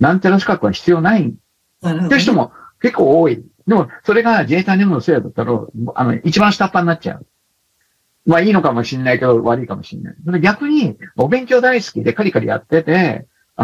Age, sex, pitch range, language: 50-69, male, 140-225 Hz, Japanese